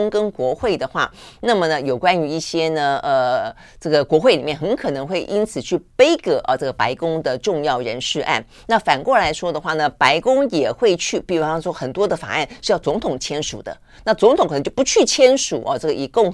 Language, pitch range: Chinese, 140-175 Hz